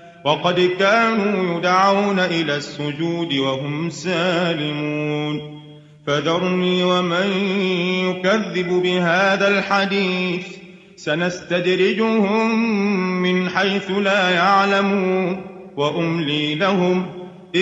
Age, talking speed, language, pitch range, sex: 30-49, 65 wpm, Arabic, 180-205 Hz, male